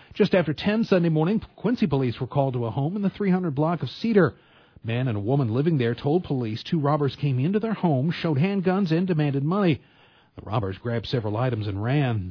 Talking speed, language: 220 wpm, English